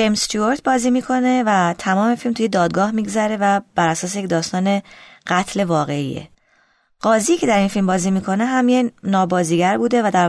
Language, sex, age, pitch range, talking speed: Persian, female, 20-39, 175-220 Hz, 170 wpm